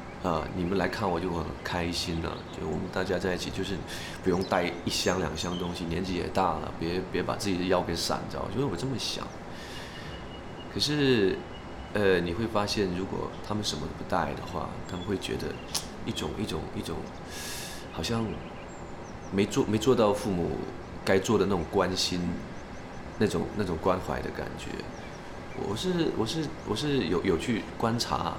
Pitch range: 90-115 Hz